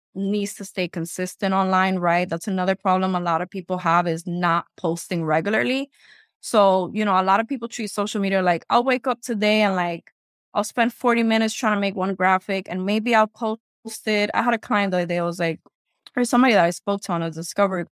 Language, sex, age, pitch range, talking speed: English, female, 20-39, 175-215 Hz, 225 wpm